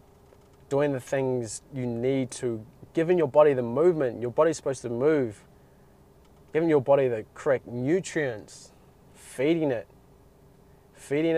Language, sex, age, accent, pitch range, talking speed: English, male, 20-39, Australian, 130-145 Hz, 130 wpm